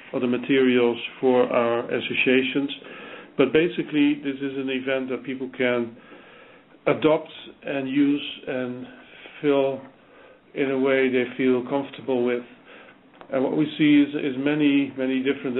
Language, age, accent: English, 50-69, Dutch